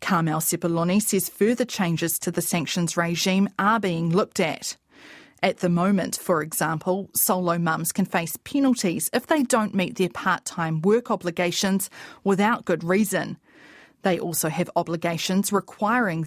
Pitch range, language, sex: 170-225 Hz, English, female